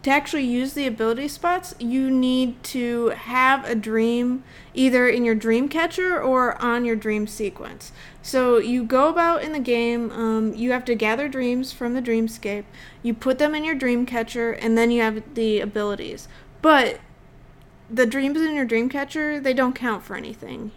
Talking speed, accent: 180 wpm, American